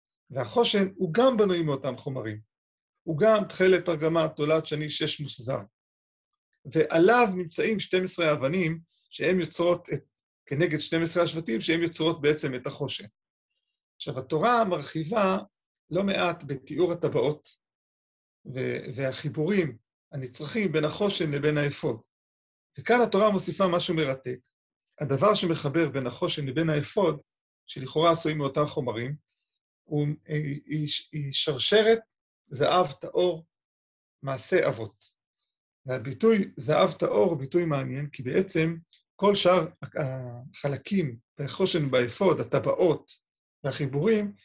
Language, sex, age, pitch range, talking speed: Hebrew, male, 40-59, 140-180 Hz, 110 wpm